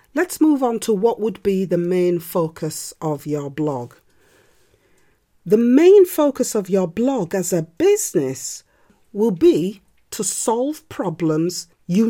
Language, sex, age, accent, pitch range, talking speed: English, female, 40-59, British, 185-305 Hz, 140 wpm